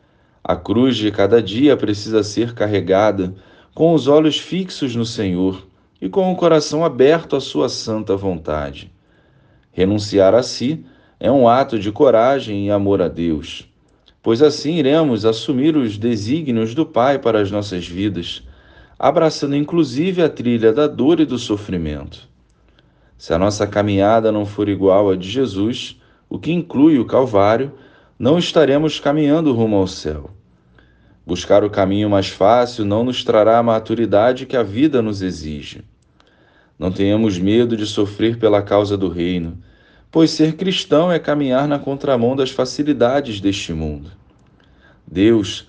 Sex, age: male, 40-59